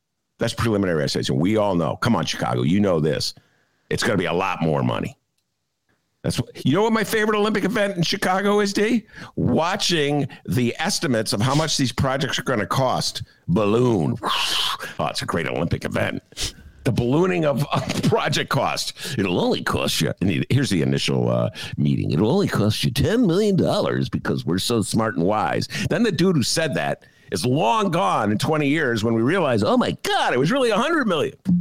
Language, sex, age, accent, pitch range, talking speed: English, male, 50-69, American, 120-180 Hz, 190 wpm